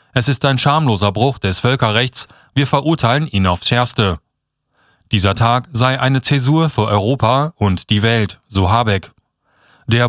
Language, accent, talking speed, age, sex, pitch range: German, German, 150 wpm, 30-49, male, 105-140 Hz